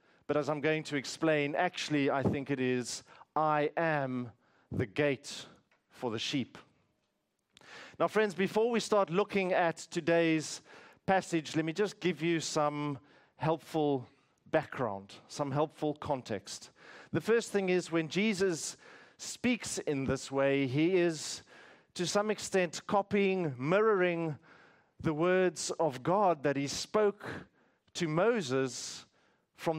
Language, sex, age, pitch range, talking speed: English, male, 40-59, 145-195 Hz, 130 wpm